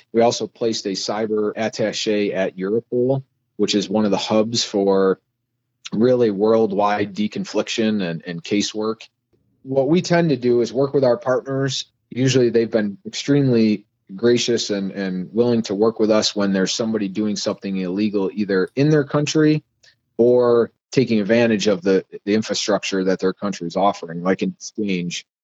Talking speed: 160 wpm